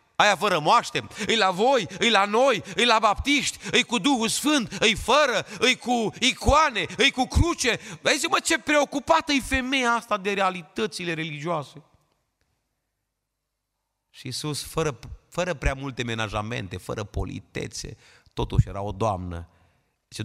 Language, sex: Romanian, male